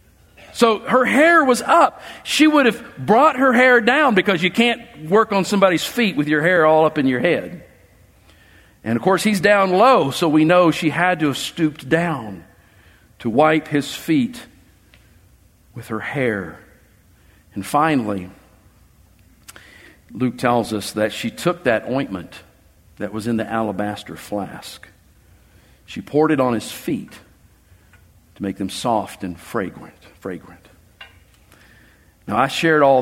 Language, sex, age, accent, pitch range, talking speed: English, male, 50-69, American, 100-155 Hz, 150 wpm